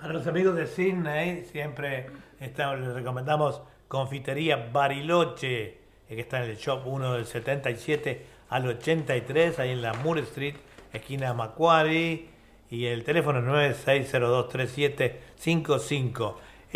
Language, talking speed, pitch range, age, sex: Spanish, 115 wpm, 120-145 Hz, 60-79, male